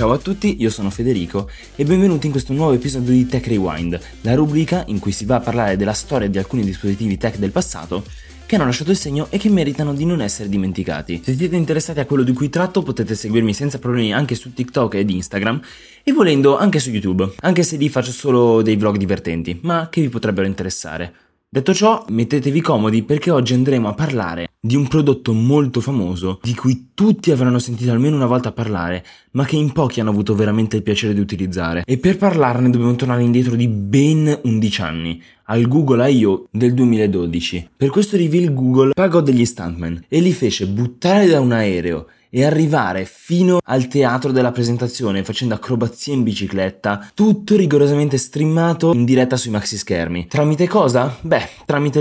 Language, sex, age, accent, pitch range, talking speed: Italian, male, 20-39, native, 100-145 Hz, 190 wpm